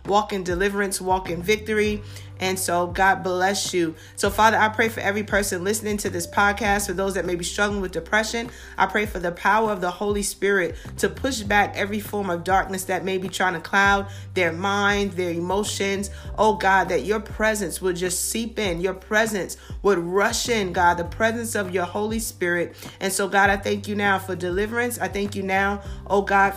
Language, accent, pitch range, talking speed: English, American, 180-205 Hz, 210 wpm